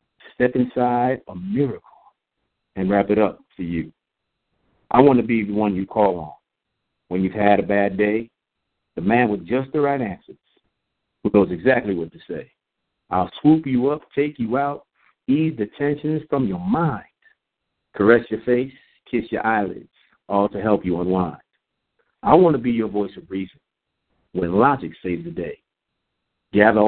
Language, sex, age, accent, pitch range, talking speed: English, male, 50-69, American, 100-125 Hz, 170 wpm